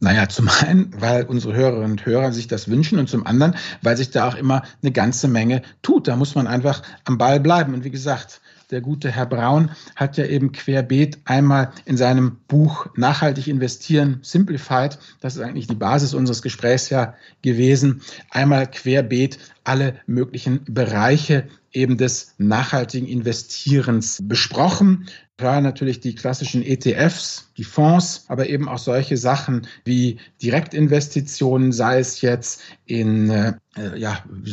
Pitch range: 125-145 Hz